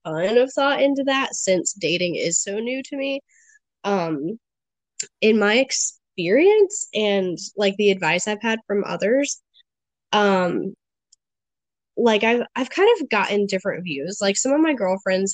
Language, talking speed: English, 145 wpm